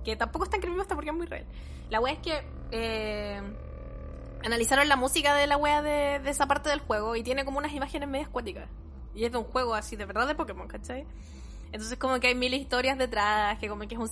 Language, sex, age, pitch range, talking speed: Spanish, female, 10-29, 210-270 Hz, 240 wpm